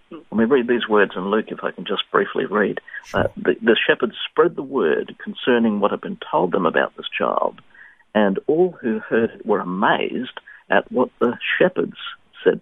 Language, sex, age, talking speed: English, male, 50-69, 195 wpm